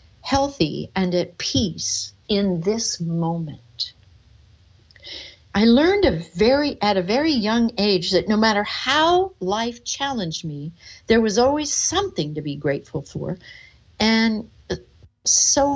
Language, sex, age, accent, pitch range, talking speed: English, female, 60-79, American, 155-235 Hz, 120 wpm